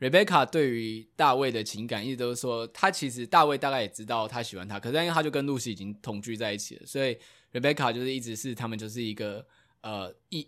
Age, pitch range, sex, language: 20-39, 115-155 Hz, male, Chinese